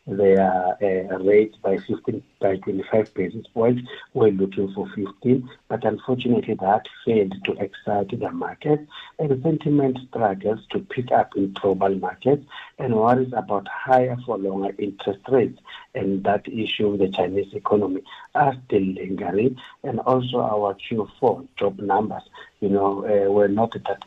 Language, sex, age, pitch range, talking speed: English, male, 60-79, 100-125 Hz, 150 wpm